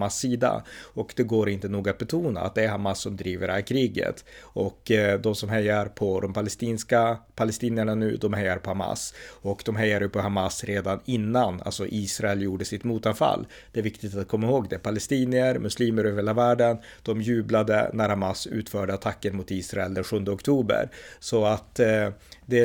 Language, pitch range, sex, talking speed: Swedish, 100-115 Hz, male, 185 wpm